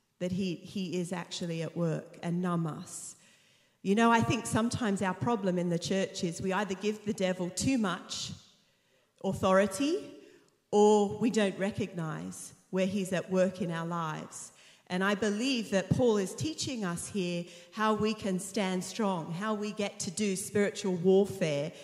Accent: Australian